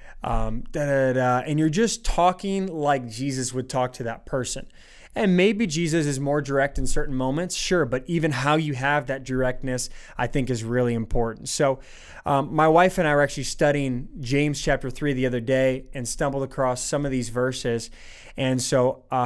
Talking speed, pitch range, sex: 185 wpm, 135-160 Hz, male